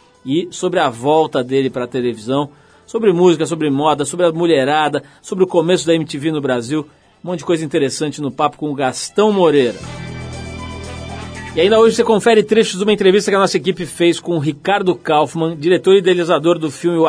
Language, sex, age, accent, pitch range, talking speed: Portuguese, male, 40-59, Brazilian, 140-180 Hz, 200 wpm